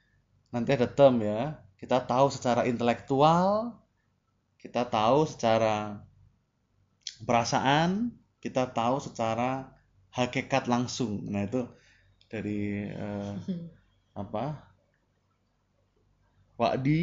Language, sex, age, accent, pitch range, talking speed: Indonesian, male, 20-39, native, 105-140 Hz, 80 wpm